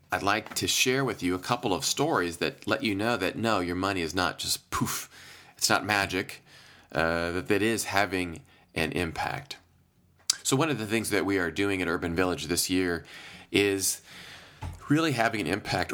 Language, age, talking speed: English, 30-49, 190 wpm